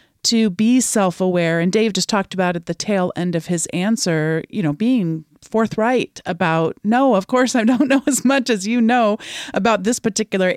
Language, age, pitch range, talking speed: English, 40-59, 185-235 Hz, 195 wpm